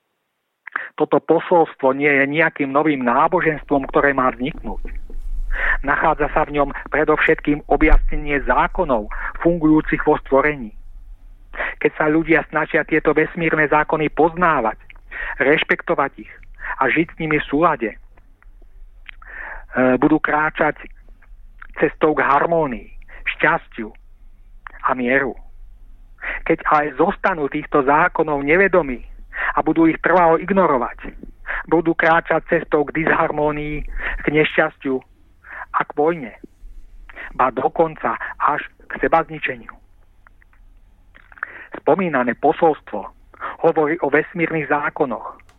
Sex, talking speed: male, 100 wpm